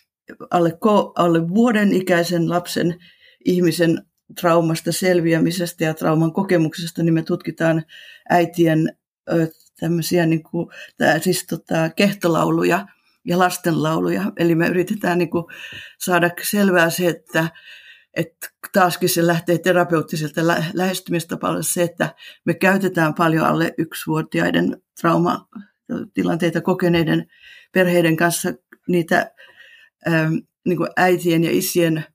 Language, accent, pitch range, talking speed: Finnish, native, 165-180 Hz, 105 wpm